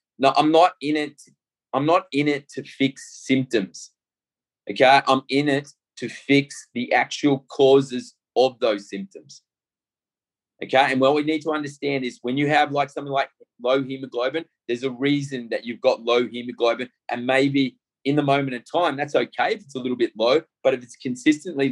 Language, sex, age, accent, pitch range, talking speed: English, male, 20-39, Australian, 125-145 Hz, 185 wpm